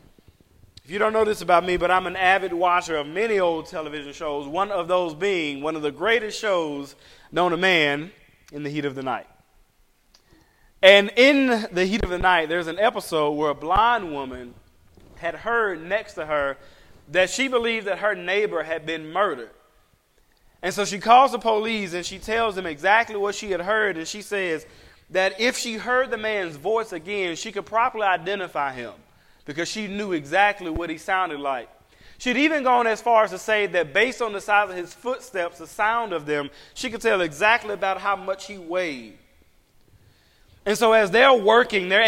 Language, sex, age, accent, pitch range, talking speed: English, male, 30-49, American, 155-215 Hz, 195 wpm